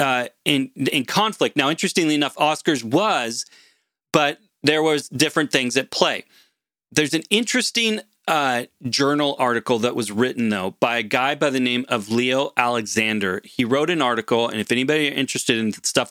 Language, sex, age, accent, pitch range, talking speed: English, male, 30-49, American, 120-155 Hz, 175 wpm